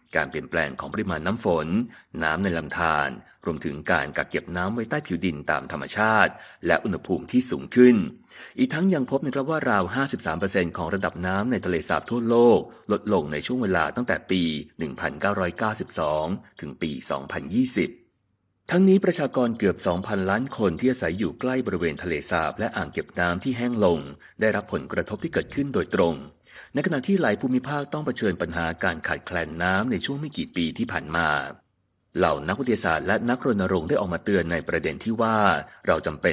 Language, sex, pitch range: Thai, male, 90-130 Hz